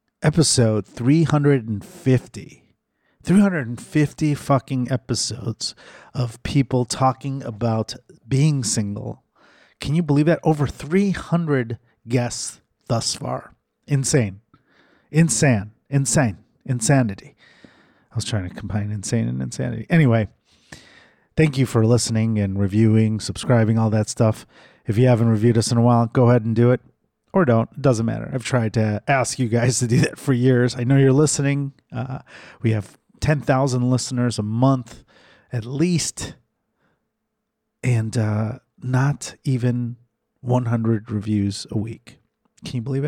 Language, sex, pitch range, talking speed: English, male, 110-140 Hz, 130 wpm